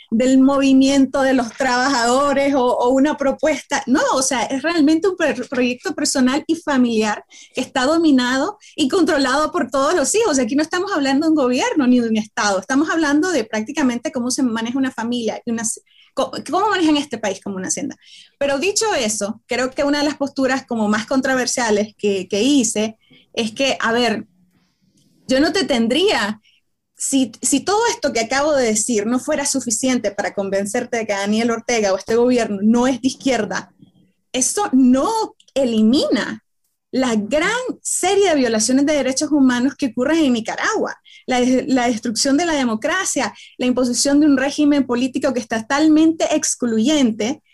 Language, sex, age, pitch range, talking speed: Spanish, female, 20-39, 235-300 Hz, 170 wpm